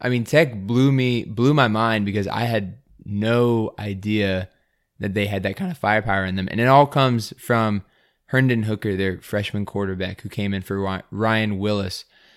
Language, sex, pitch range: English, male, 100-115 Hz